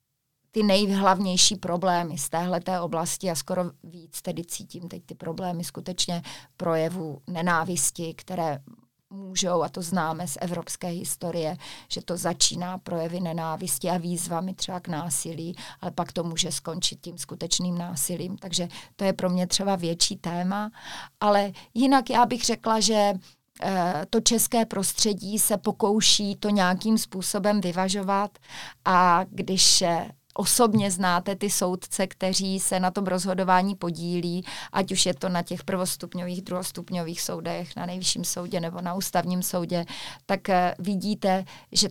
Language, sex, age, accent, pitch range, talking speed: Czech, female, 30-49, native, 175-195 Hz, 140 wpm